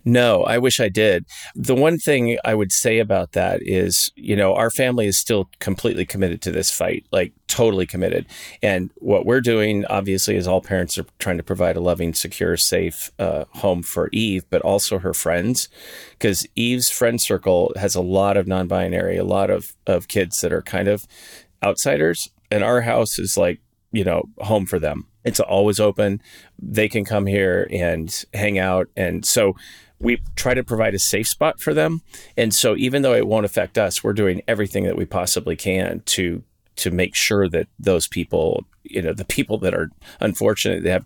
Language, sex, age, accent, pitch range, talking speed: English, male, 30-49, American, 90-110 Hz, 195 wpm